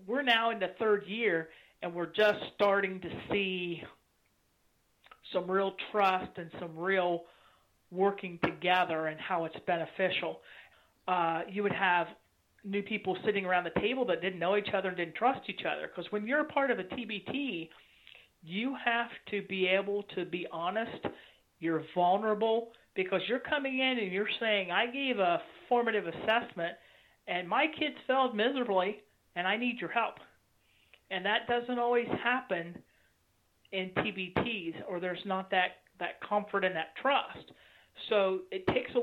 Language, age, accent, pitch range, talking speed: English, 40-59, American, 175-215 Hz, 160 wpm